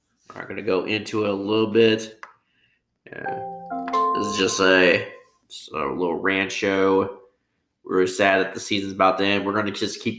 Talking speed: 195 wpm